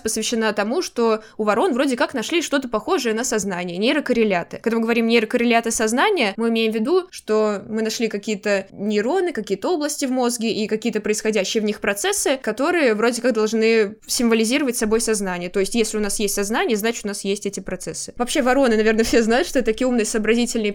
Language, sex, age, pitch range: Russian, female, 20-39, 215-255 Hz